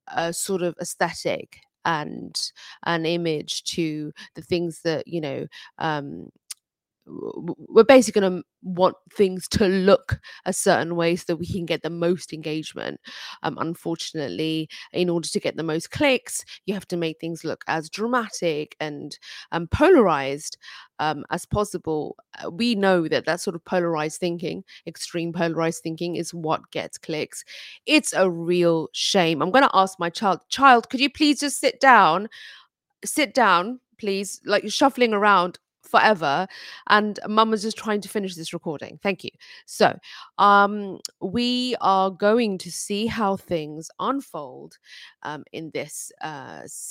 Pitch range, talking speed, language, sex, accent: 165-210 Hz, 150 wpm, English, female, British